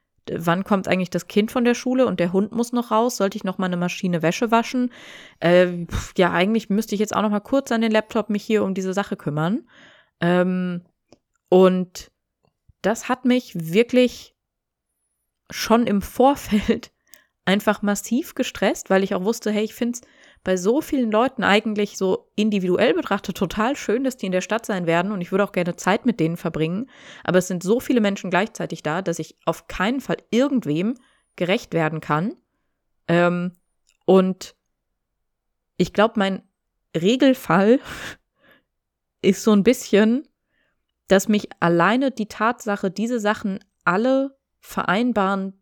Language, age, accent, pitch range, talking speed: German, 20-39, German, 180-240 Hz, 160 wpm